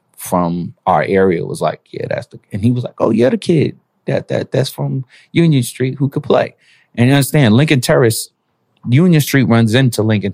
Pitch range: 100-130 Hz